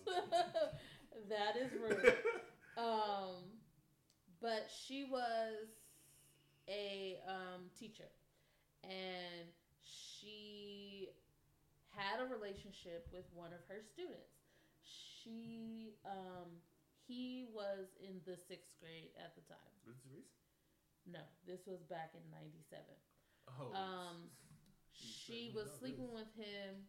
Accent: American